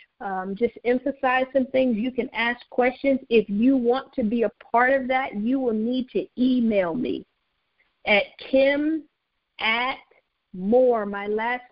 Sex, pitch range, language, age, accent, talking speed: female, 220-265 Hz, English, 50-69, American, 155 wpm